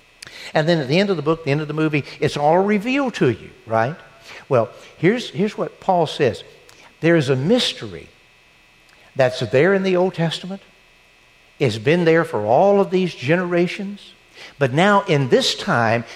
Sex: male